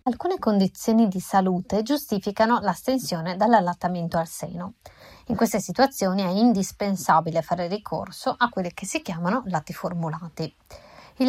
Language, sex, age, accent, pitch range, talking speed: Italian, female, 20-39, native, 180-230 Hz, 130 wpm